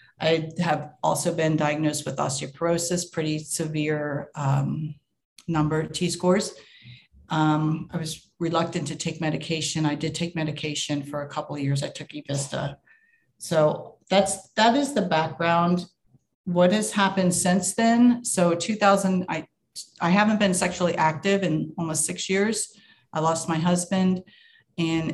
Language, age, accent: English, 40-59, American